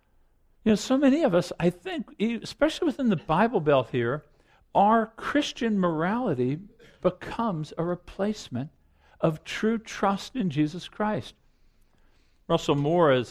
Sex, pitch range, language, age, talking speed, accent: male, 160-230 Hz, English, 50-69, 130 wpm, American